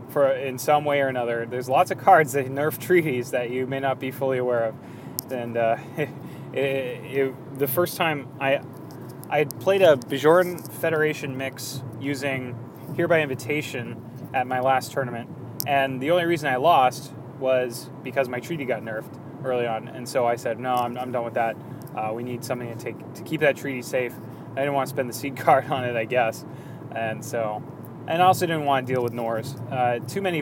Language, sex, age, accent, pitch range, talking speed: English, male, 20-39, American, 125-150 Hz, 205 wpm